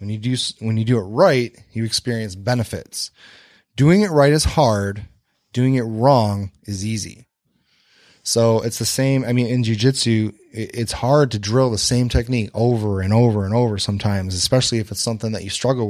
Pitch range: 105-125 Hz